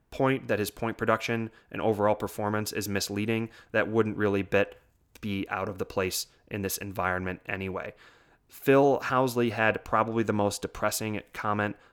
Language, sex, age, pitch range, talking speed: English, male, 20-39, 100-115 Hz, 155 wpm